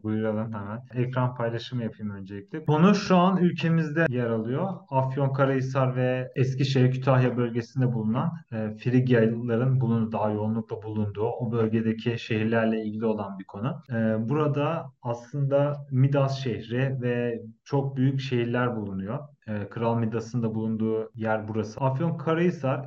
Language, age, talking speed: Turkish, 40-59, 130 wpm